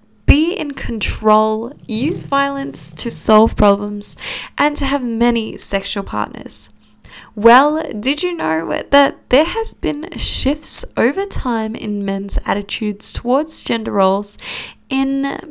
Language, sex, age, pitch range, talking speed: English, female, 10-29, 210-275 Hz, 125 wpm